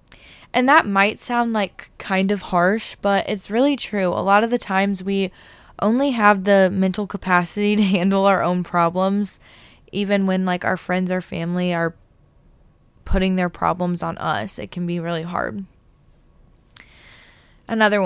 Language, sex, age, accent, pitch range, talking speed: English, female, 10-29, American, 180-215 Hz, 155 wpm